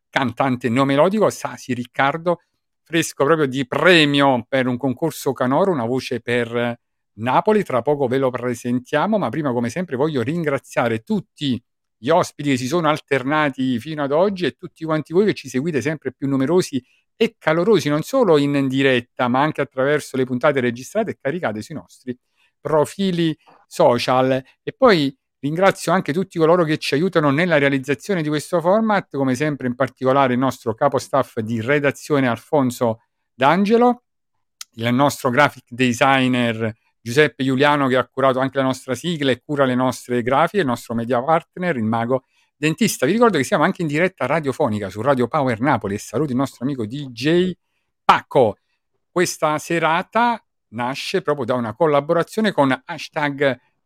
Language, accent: Italian, native